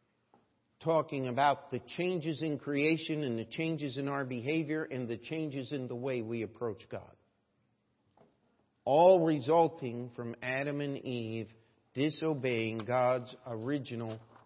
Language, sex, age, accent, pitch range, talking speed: English, male, 50-69, American, 125-160 Hz, 125 wpm